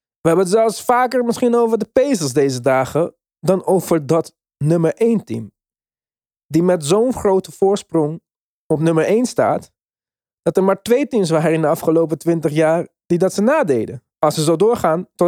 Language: Dutch